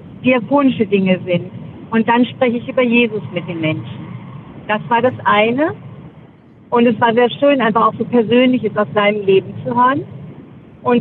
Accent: German